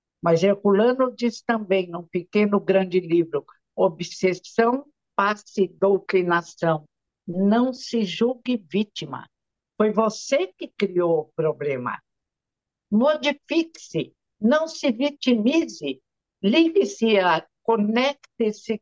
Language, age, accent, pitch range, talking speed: Portuguese, 60-79, Brazilian, 185-255 Hz, 90 wpm